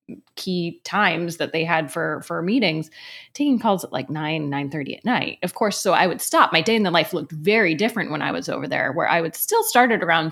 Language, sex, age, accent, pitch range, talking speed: English, female, 20-39, American, 160-200 Hz, 245 wpm